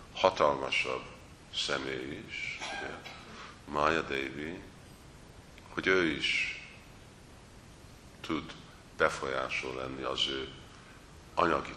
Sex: male